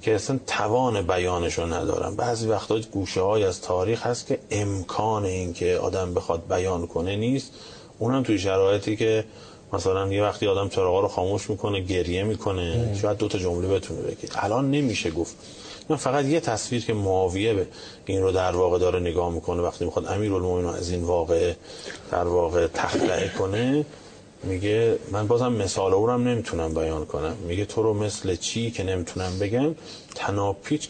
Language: Persian